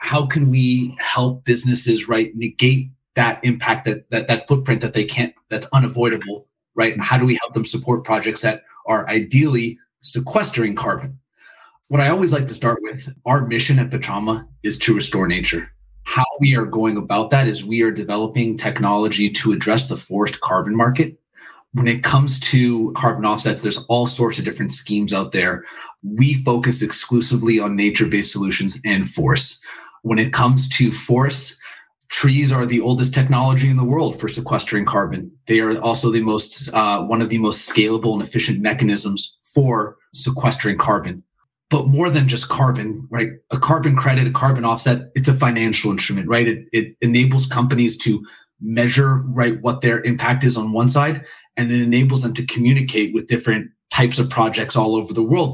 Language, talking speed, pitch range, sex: English, 180 wpm, 115-130 Hz, male